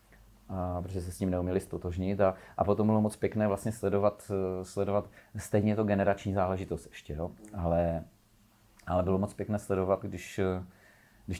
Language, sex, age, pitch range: Czech, male, 40-59, 90-100 Hz